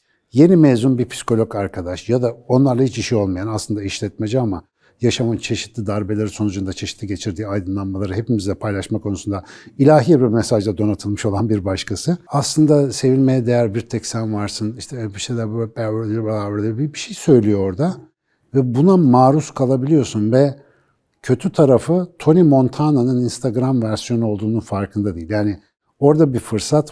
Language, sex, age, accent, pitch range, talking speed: Turkish, male, 60-79, native, 105-130 Hz, 145 wpm